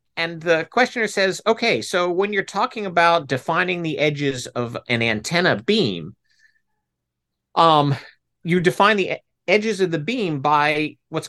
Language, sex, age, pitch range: English, male, 50-69, 150-215 Hz